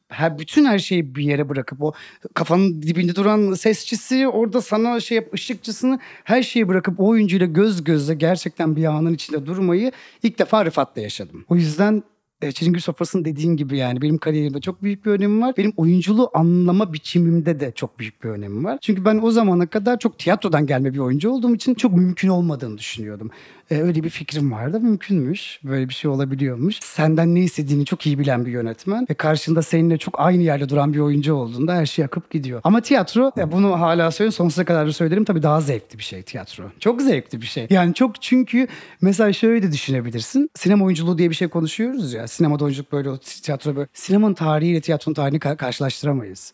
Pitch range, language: 145-205 Hz, Turkish